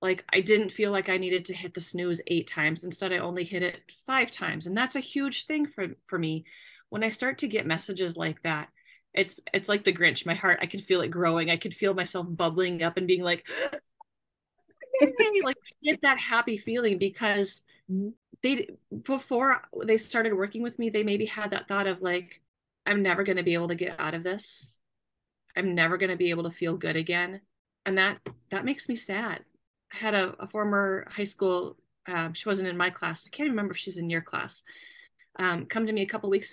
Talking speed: 215 wpm